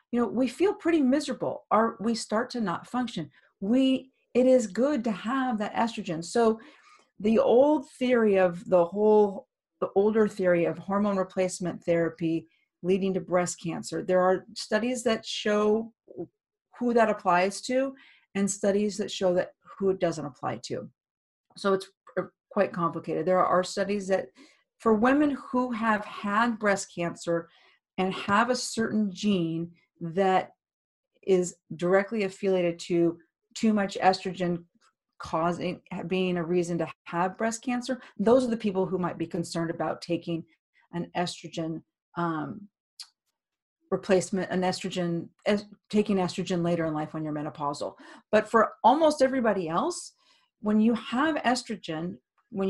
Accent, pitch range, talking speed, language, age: American, 175-230 Hz, 145 wpm, English, 50-69